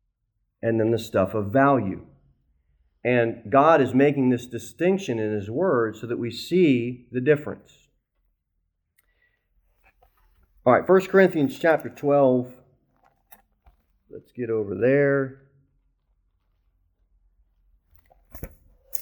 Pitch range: 105-145 Hz